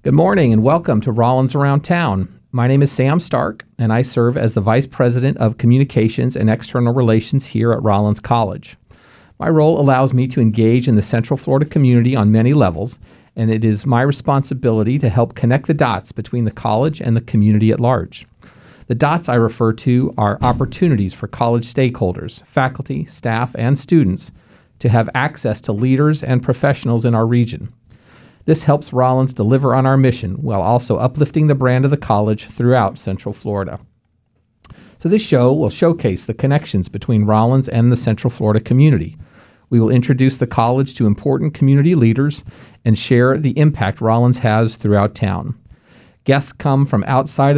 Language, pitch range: English, 110-135 Hz